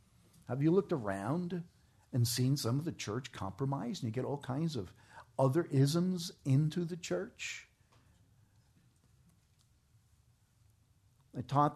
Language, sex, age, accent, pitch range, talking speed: English, male, 50-69, American, 110-145 Hz, 120 wpm